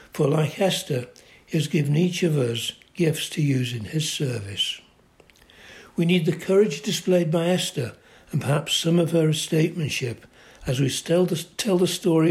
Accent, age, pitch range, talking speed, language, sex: British, 60-79, 130-165 Hz, 170 wpm, English, male